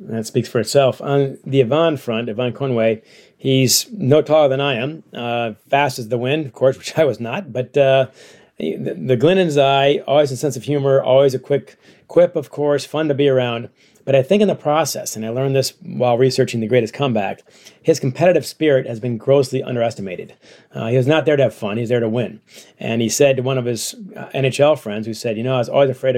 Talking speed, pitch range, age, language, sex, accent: 230 wpm, 120-140 Hz, 40-59, English, male, American